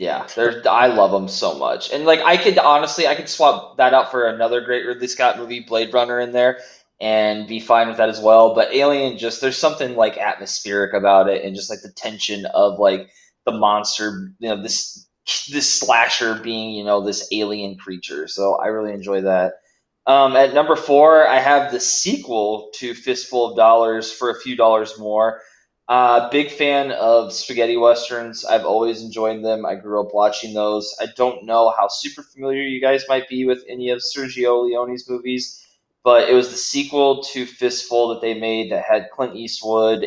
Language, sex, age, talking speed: English, male, 20-39, 195 wpm